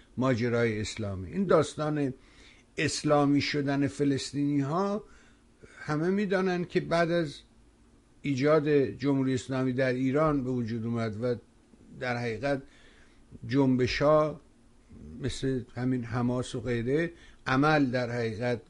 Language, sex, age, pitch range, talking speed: Persian, male, 60-79, 120-155 Hz, 105 wpm